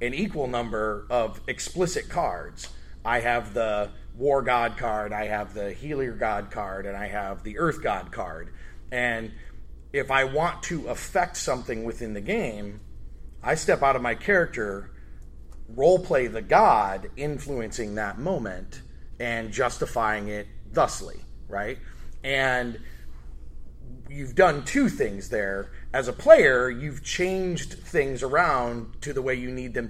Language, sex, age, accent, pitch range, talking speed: English, male, 30-49, American, 105-140 Hz, 145 wpm